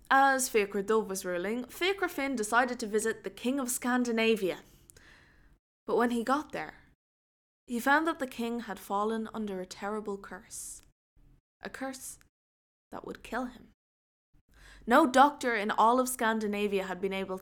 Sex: female